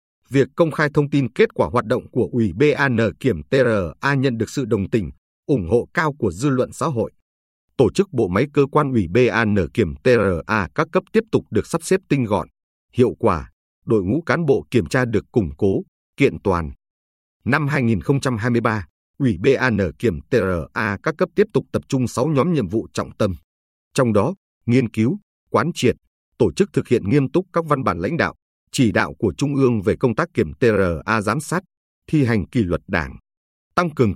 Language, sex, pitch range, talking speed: Vietnamese, male, 100-145 Hz, 200 wpm